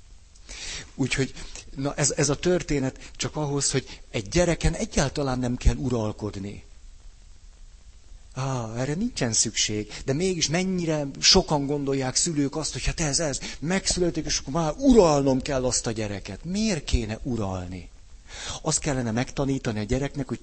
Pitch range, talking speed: 100-145 Hz, 140 wpm